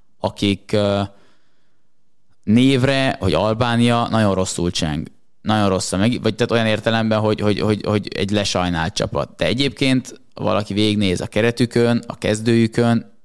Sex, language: male, Hungarian